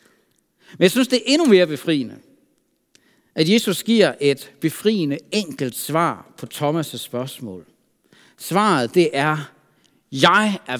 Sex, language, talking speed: male, Danish, 130 wpm